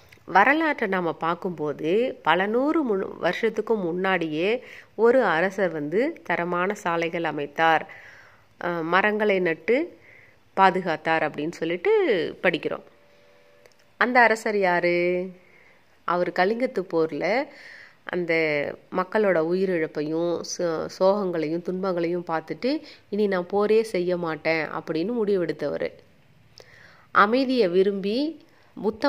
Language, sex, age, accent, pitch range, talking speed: Tamil, female, 30-49, native, 170-220 Hz, 90 wpm